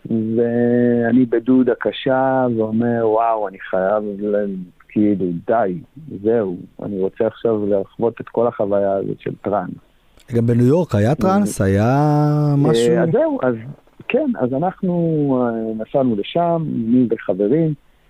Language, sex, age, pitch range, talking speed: Hebrew, male, 50-69, 110-135 Hz, 115 wpm